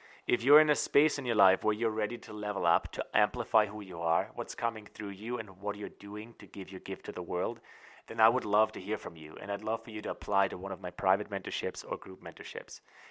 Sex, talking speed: male, 265 wpm